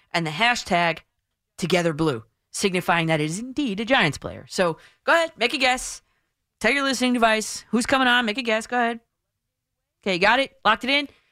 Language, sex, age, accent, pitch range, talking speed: English, female, 30-49, American, 180-240 Hz, 190 wpm